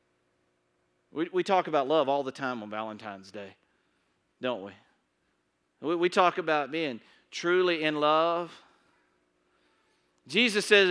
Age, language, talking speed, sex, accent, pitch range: 40-59, English, 115 wpm, male, American, 140-230 Hz